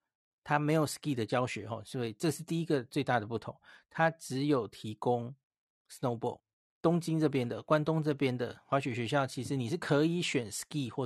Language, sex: Chinese, male